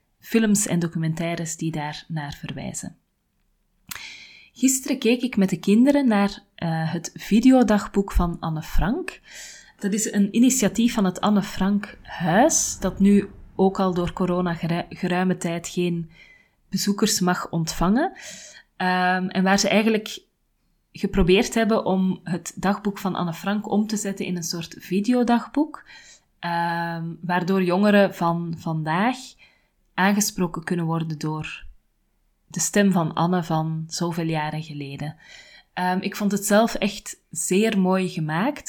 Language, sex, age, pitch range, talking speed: Dutch, female, 30-49, 170-200 Hz, 130 wpm